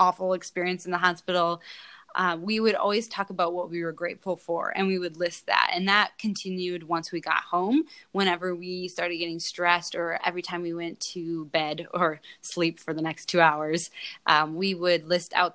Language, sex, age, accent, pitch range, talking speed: English, female, 20-39, American, 165-185 Hz, 200 wpm